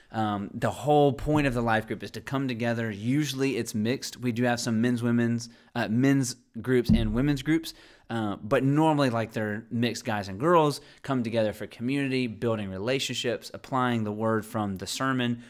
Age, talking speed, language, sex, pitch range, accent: 30-49, 185 wpm, English, male, 110-130 Hz, American